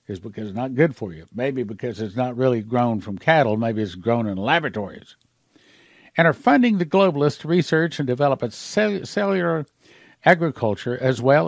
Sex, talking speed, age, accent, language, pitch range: male, 175 wpm, 60-79, American, English, 120-160 Hz